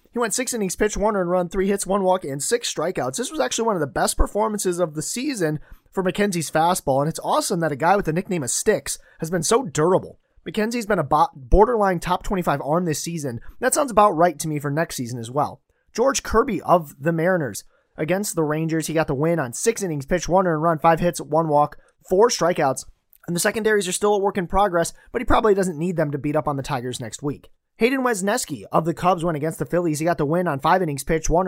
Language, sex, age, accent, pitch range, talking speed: English, male, 30-49, American, 155-200 Hz, 250 wpm